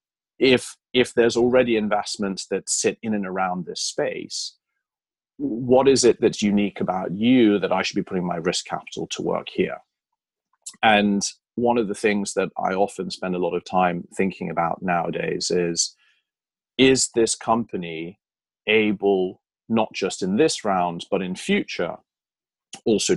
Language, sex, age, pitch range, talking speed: English, male, 30-49, 90-120 Hz, 155 wpm